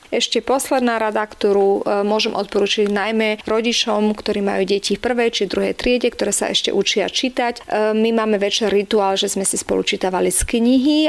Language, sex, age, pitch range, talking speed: Slovak, female, 40-59, 190-225 Hz, 175 wpm